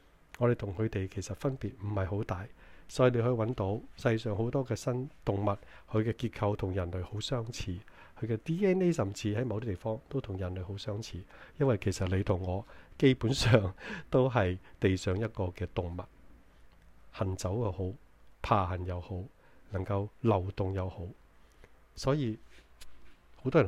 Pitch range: 95-120 Hz